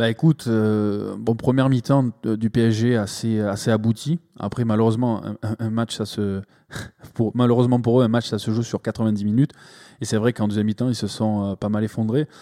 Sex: male